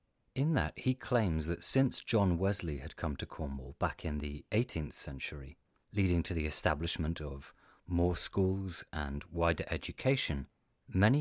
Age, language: 30-49, English